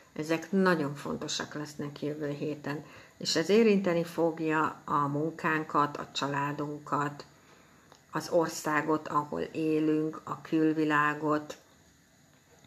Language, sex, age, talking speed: Hungarian, female, 60-79, 95 wpm